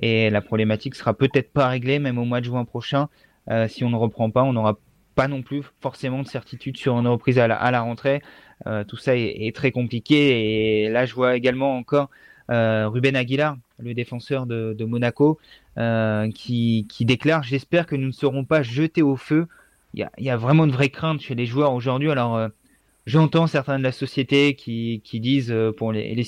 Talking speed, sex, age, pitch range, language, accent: 210 wpm, male, 30-49, 120-145 Hz, French, French